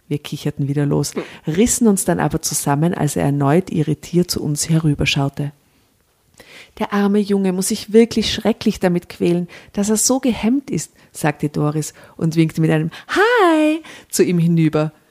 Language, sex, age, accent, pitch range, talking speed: German, female, 50-69, German, 150-195 Hz, 160 wpm